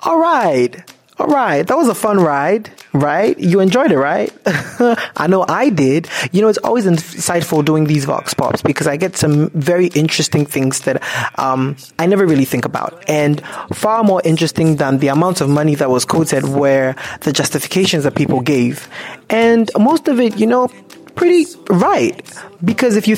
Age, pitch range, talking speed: 20-39, 140-195 Hz, 180 wpm